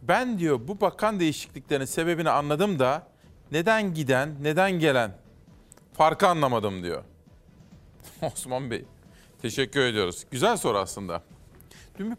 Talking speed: 120 wpm